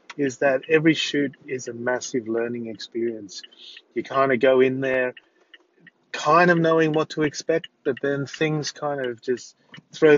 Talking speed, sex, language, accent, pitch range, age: 165 wpm, male, English, Australian, 130-155 Hz, 30-49